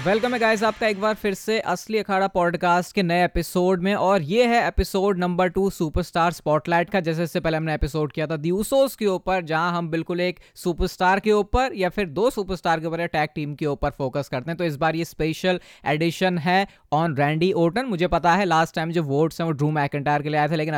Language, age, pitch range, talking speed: Hindi, 20-39, 155-185 Hz, 230 wpm